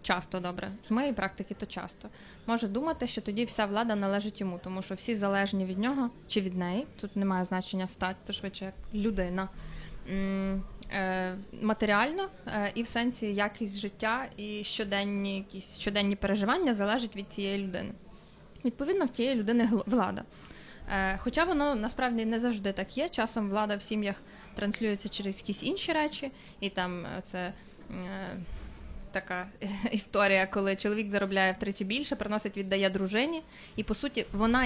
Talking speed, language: 150 wpm, Ukrainian